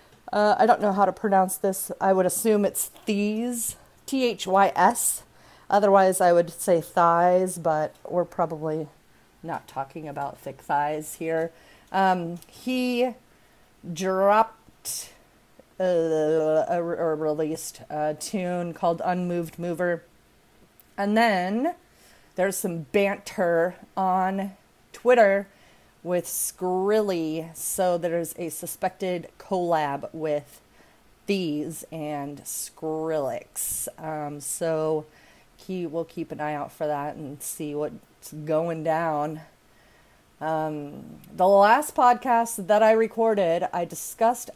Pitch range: 160-195 Hz